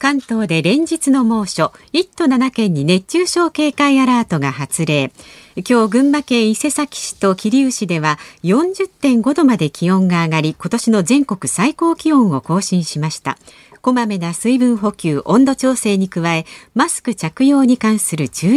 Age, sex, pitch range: 50-69, female, 170-270 Hz